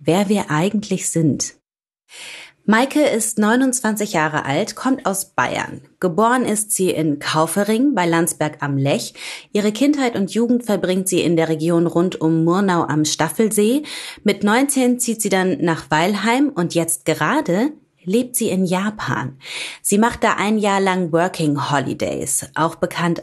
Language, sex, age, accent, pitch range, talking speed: German, female, 30-49, German, 165-220 Hz, 150 wpm